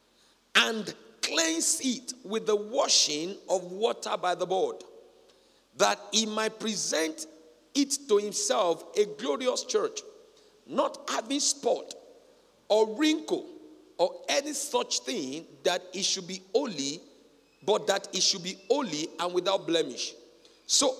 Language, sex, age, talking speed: English, male, 50-69, 130 wpm